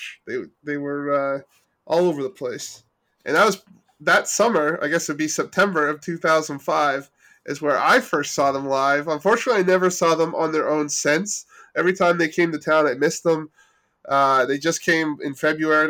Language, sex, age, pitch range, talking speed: English, male, 20-39, 145-165 Hz, 200 wpm